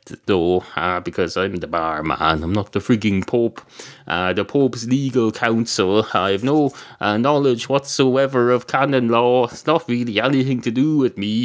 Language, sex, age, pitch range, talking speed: English, male, 30-49, 95-140 Hz, 170 wpm